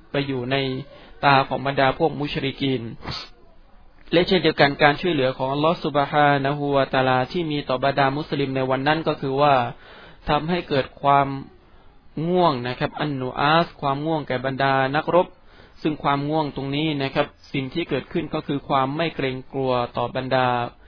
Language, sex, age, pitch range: Thai, male, 20-39, 130-155 Hz